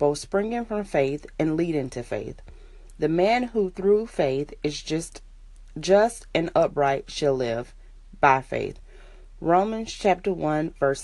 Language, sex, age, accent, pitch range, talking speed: English, female, 30-49, American, 145-185 Hz, 140 wpm